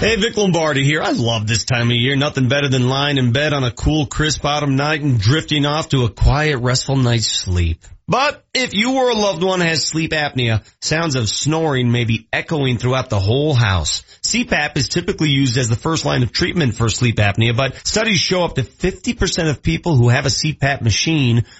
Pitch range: 125-175 Hz